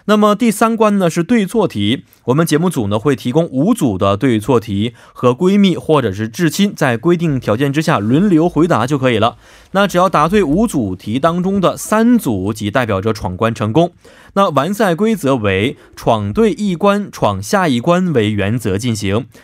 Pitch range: 115-175 Hz